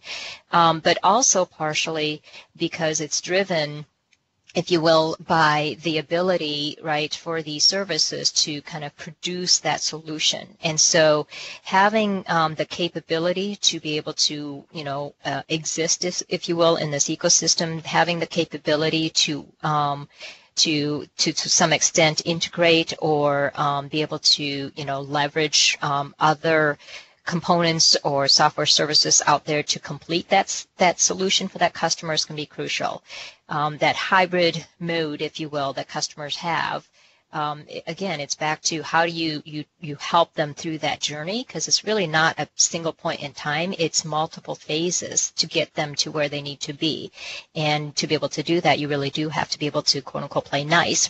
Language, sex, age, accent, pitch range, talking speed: English, female, 40-59, American, 150-170 Hz, 175 wpm